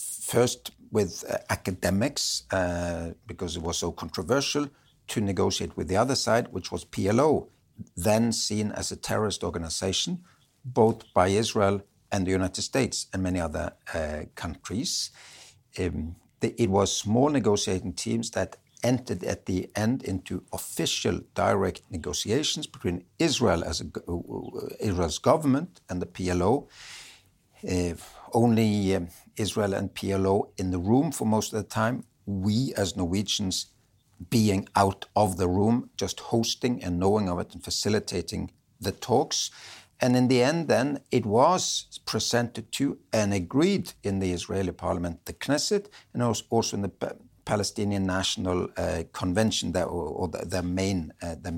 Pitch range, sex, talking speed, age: 90-115 Hz, male, 140 wpm, 60-79